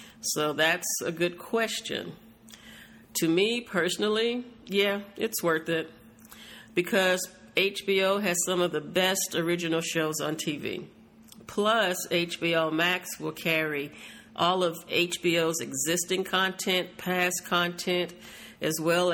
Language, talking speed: English, 115 wpm